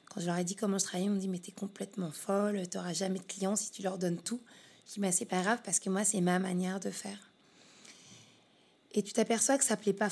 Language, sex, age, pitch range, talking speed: French, female, 20-39, 195-220 Hz, 285 wpm